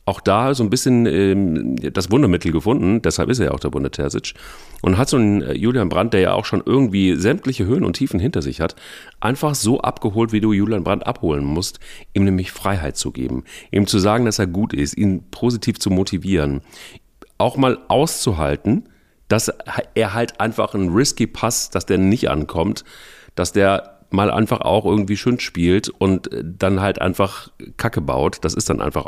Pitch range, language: 85-110 Hz, German